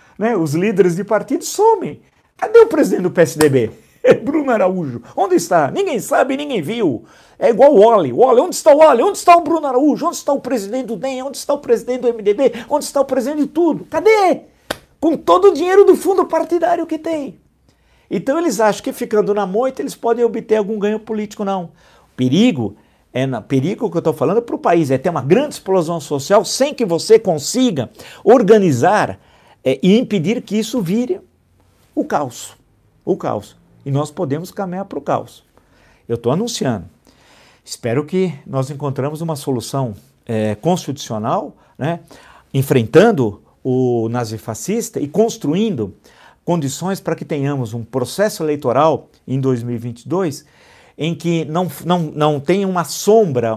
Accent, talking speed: Brazilian, 160 wpm